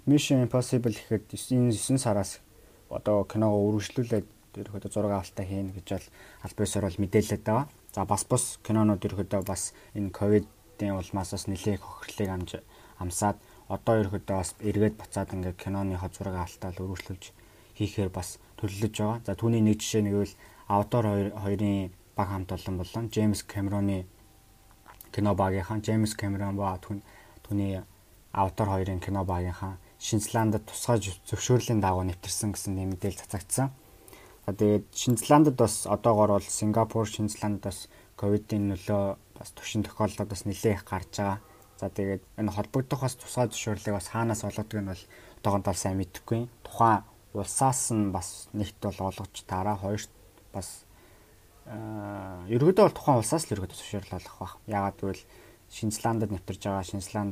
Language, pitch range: English, 95-110 Hz